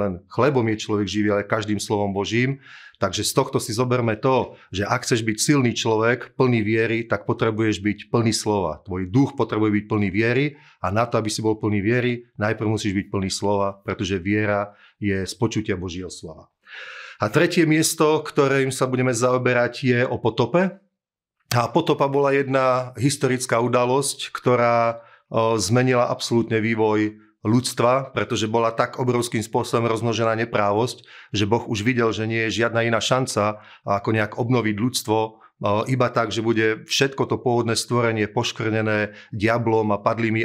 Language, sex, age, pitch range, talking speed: Slovak, male, 40-59, 105-125 Hz, 160 wpm